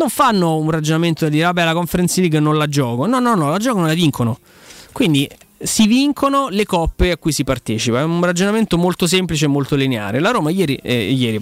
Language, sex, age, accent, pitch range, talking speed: Italian, male, 20-39, native, 135-170 Hz, 225 wpm